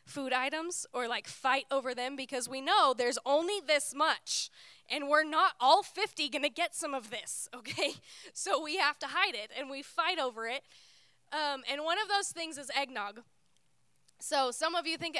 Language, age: English, 10-29